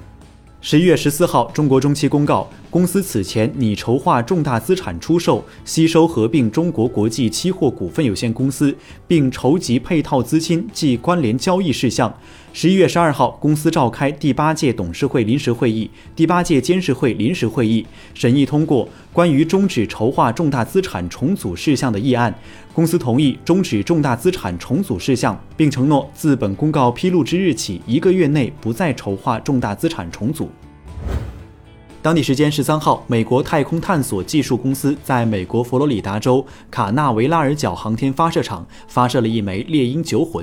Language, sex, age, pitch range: Chinese, male, 20-39, 110-155 Hz